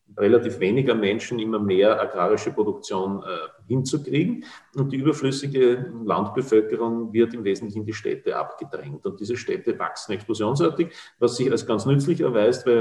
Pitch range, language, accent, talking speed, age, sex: 110-140 Hz, German, Austrian, 150 wpm, 40-59, male